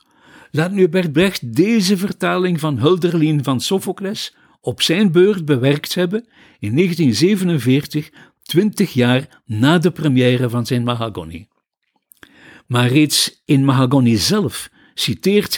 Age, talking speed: 60-79, 120 wpm